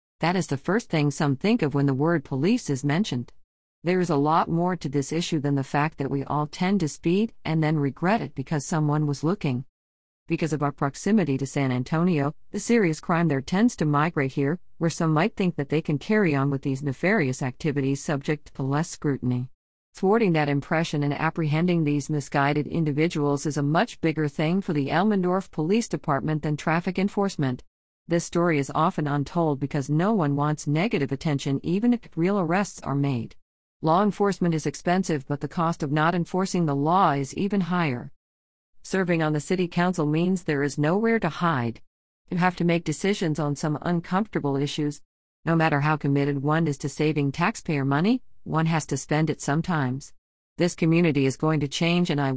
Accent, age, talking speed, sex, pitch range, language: American, 50-69, 190 wpm, female, 140-175 Hz, English